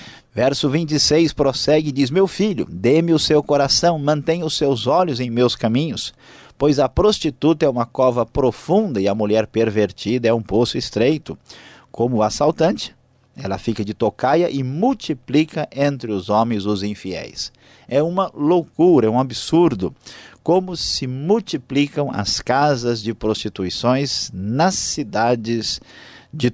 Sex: male